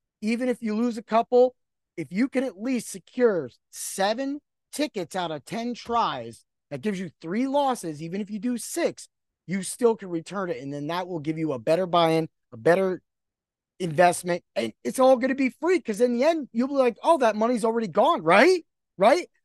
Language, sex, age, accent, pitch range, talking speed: English, male, 30-49, American, 210-290 Hz, 205 wpm